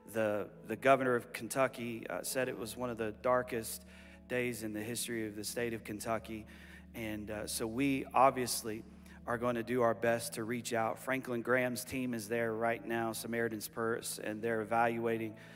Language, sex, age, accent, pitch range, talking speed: English, male, 40-59, American, 110-125 Hz, 180 wpm